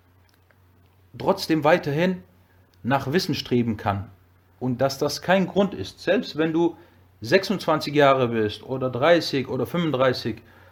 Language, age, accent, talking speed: German, 40-59, German, 125 wpm